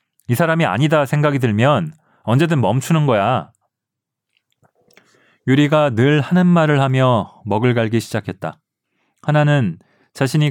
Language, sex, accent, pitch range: Korean, male, native, 100-135 Hz